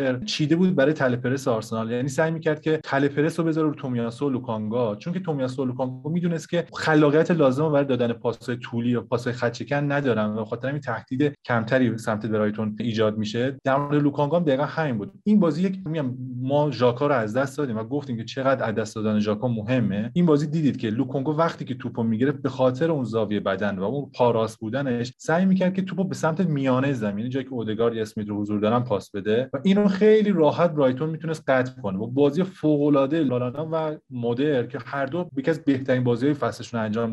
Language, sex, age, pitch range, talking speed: Persian, male, 30-49, 120-155 Hz, 205 wpm